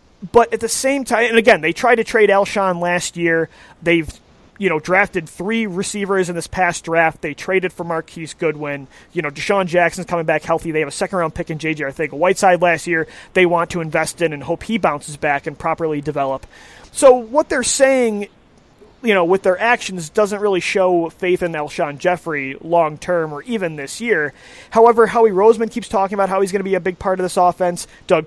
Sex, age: male, 30-49